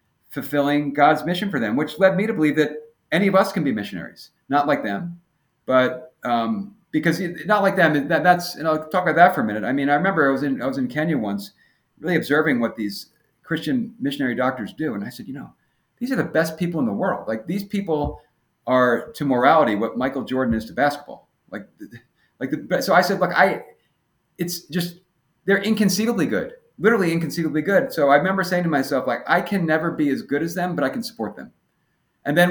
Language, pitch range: English, 145-185 Hz